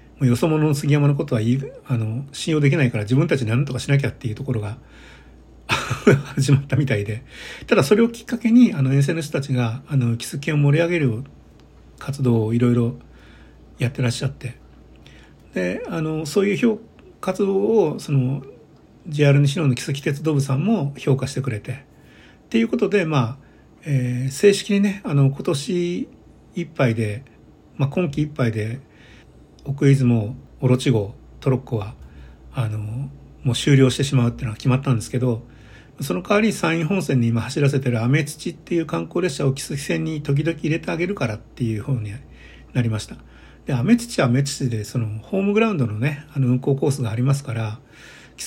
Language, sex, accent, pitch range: Japanese, male, native, 120-155 Hz